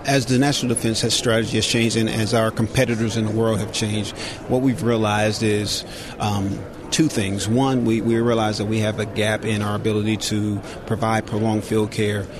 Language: English